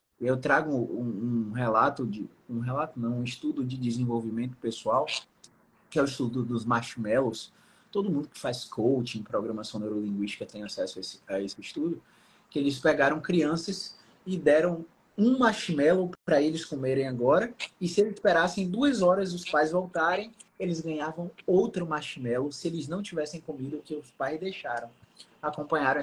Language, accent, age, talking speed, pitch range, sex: Portuguese, Brazilian, 20-39, 160 wpm, 130-185 Hz, male